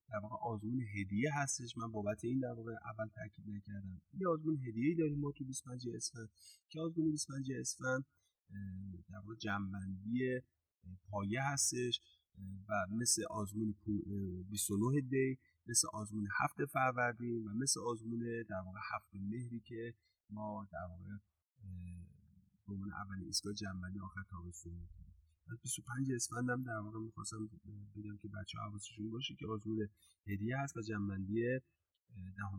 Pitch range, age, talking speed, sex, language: 100-125 Hz, 30-49, 135 wpm, male, Persian